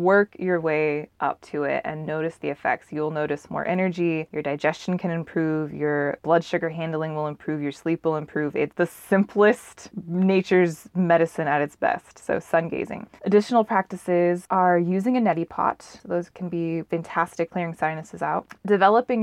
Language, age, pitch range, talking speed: English, 20-39, 155-180 Hz, 170 wpm